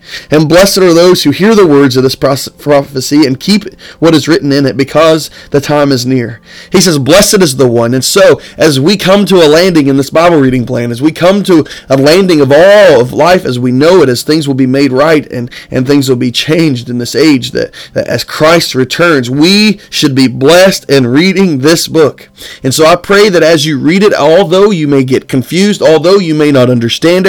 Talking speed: 225 wpm